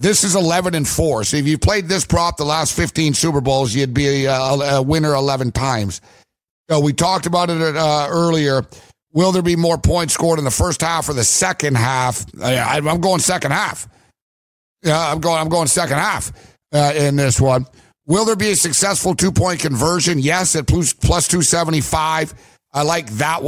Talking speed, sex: 185 wpm, male